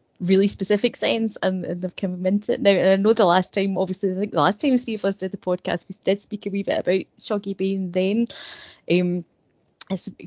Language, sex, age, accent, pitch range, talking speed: English, female, 10-29, British, 180-205 Hz, 240 wpm